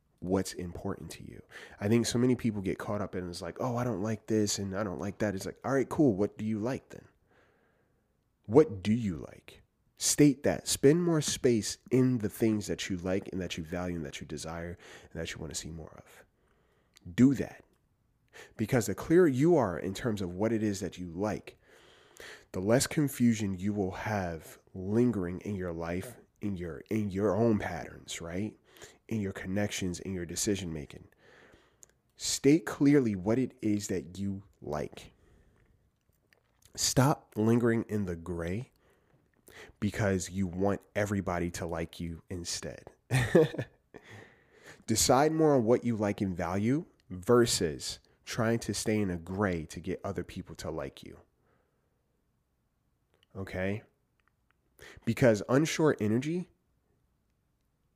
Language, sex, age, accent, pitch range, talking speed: English, male, 30-49, American, 90-115 Hz, 160 wpm